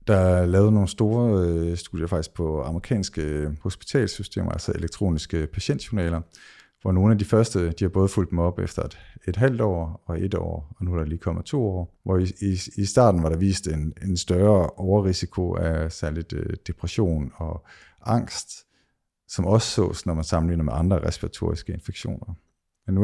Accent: native